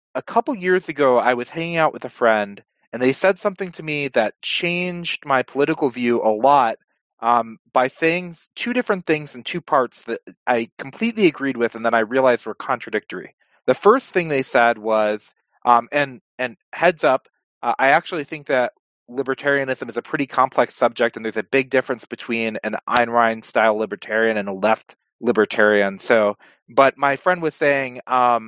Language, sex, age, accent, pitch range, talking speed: English, male, 30-49, American, 120-155 Hz, 180 wpm